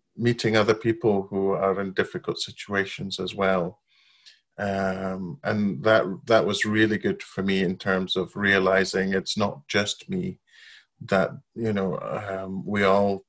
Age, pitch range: 30-49, 95-110 Hz